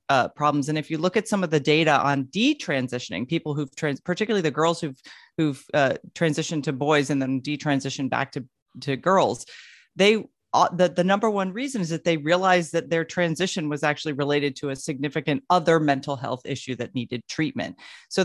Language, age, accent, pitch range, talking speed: English, 40-59, American, 145-200 Hz, 195 wpm